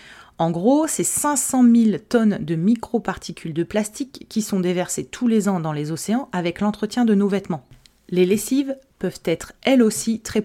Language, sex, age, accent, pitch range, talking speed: French, female, 30-49, French, 165-210 Hz, 180 wpm